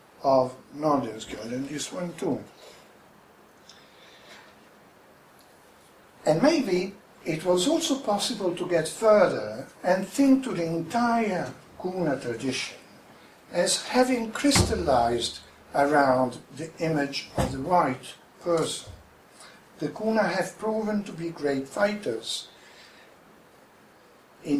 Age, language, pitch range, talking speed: 60-79, English, 135-195 Hz, 100 wpm